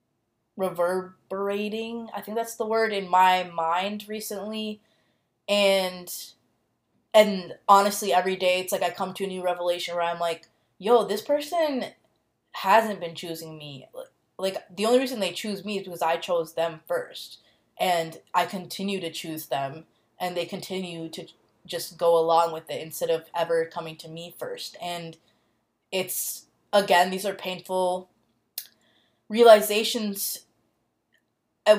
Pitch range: 170-205 Hz